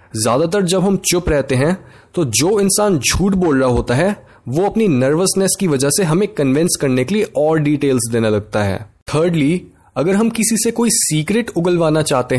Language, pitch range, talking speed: Hindi, 130-195 Hz, 180 wpm